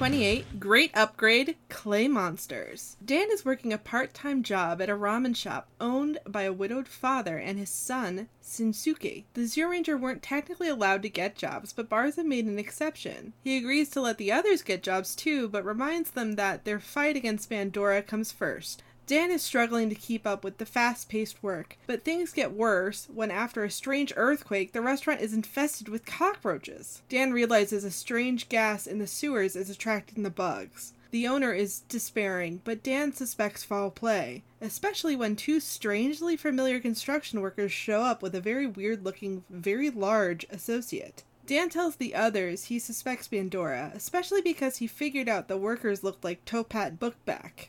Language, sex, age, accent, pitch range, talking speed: English, female, 20-39, American, 205-270 Hz, 170 wpm